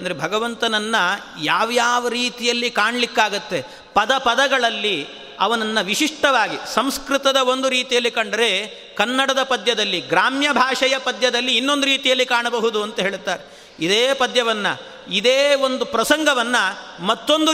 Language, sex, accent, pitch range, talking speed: Kannada, male, native, 230-275 Hz, 100 wpm